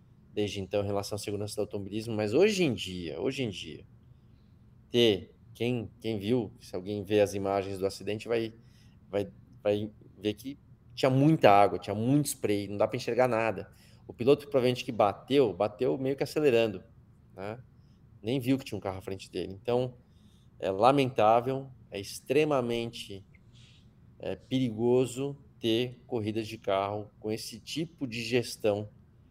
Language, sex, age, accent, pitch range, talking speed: Portuguese, male, 20-39, Brazilian, 105-120 Hz, 160 wpm